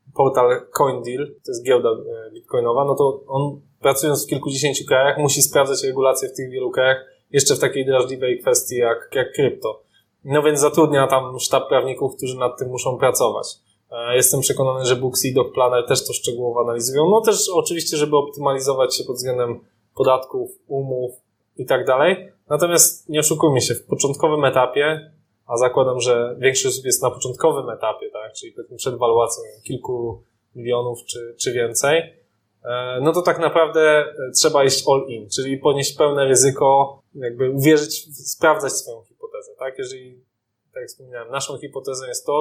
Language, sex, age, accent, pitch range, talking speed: Polish, male, 20-39, native, 125-175 Hz, 155 wpm